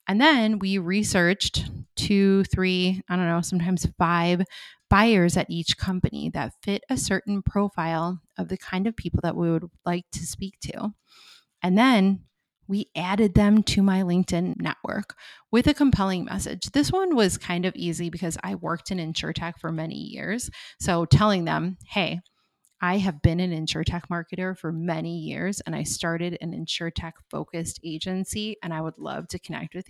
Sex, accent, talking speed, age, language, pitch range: female, American, 175 wpm, 20-39, English, 170-215 Hz